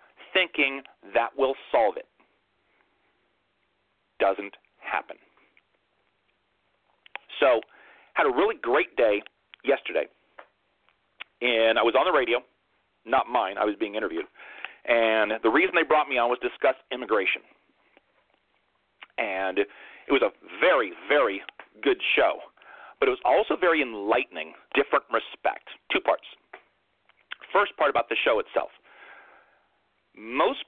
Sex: male